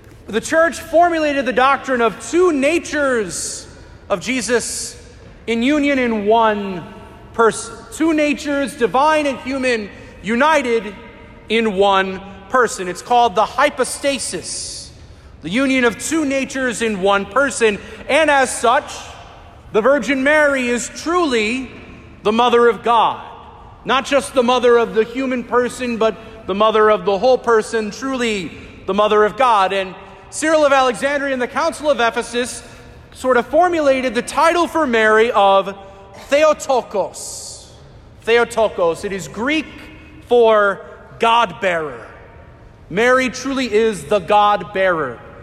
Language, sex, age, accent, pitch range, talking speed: English, male, 40-59, American, 215-275 Hz, 130 wpm